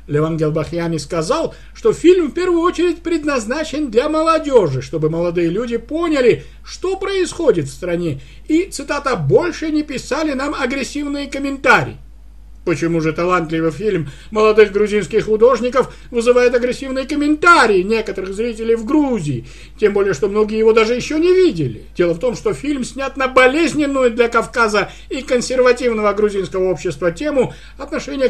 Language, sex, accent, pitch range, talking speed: Russian, male, native, 185-290 Hz, 140 wpm